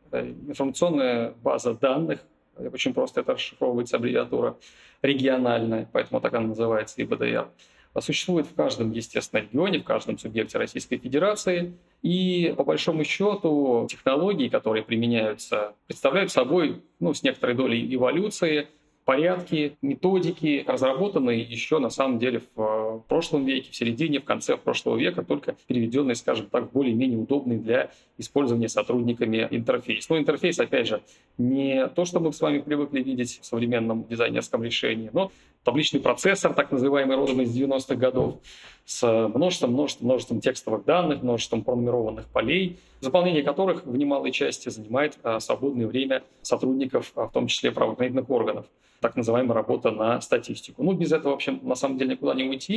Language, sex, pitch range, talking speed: Russian, male, 120-150 Hz, 150 wpm